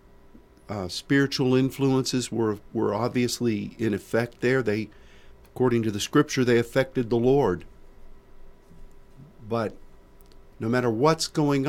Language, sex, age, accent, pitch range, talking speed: English, male, 50-69, American, 105-130 Hz, 120 wpm